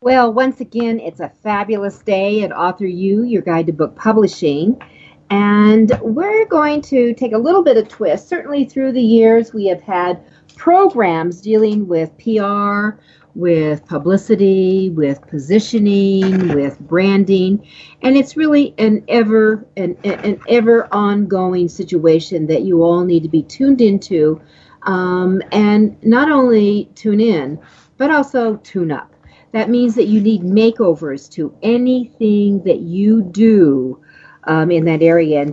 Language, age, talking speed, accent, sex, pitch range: English, 50-69, 140 wpm, American, female, 175-225 Hz